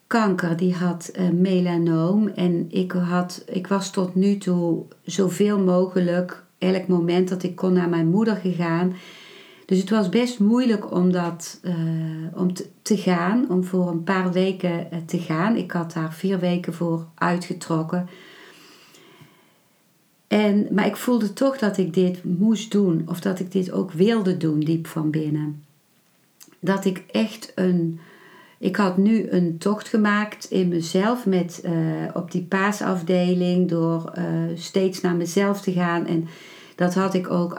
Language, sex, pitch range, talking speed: Dutch, female, 170-195 Hz, 150 wpm